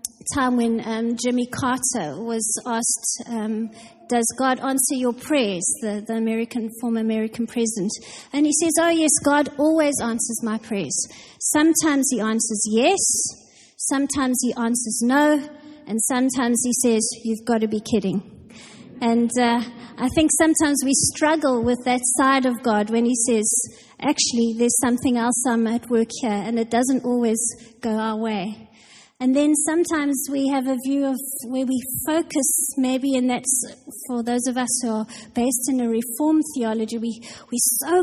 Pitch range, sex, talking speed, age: 230-275 Hz, female, 165 wpm, 30-49